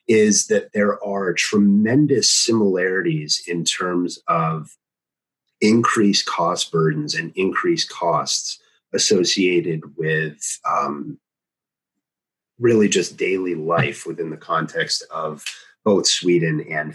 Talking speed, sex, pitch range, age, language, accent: 105 wpm, male, 85-125 Hz, 30-49, English, American